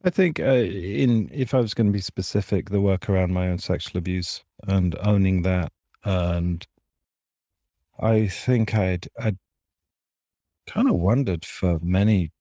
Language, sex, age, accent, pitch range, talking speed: English, male, 40-59, British, 85-100 Hz, 150 wpm